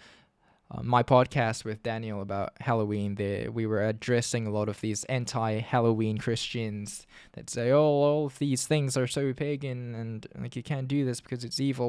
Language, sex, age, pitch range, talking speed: English, male, 10-29, 105-125 Hz, 180 wpm